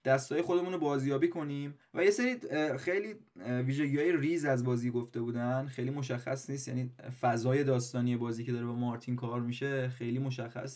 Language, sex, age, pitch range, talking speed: Persian, male, 20-39, 125-165 Hz, 165 wpm